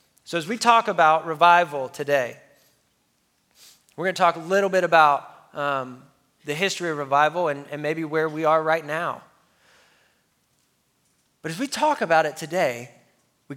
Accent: American